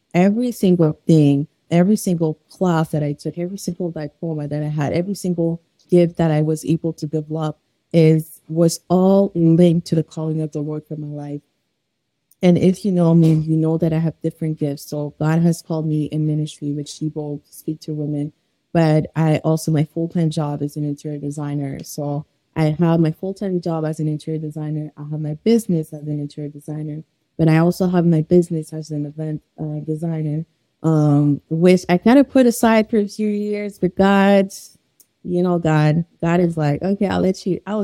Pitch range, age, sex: 150-175 Hz, 20-39, female